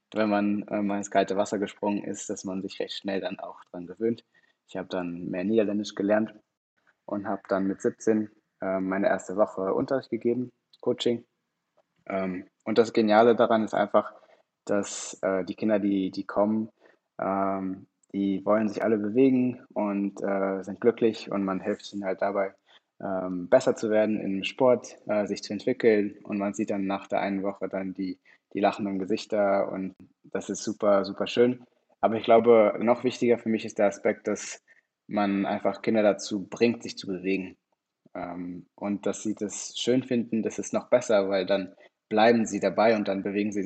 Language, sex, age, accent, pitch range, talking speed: French, male, 20-39, German, 95-110 Hz, 185 wpm